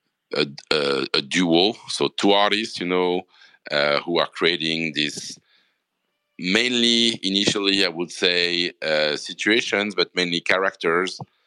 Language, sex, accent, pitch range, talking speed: English, male, French, 75-90 Hz, 125 wpm